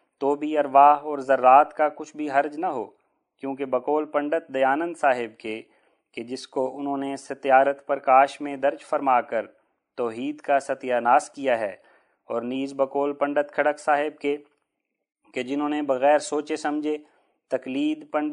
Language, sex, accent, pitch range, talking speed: English, male, Indian, 130-150 Hz, 155 wpm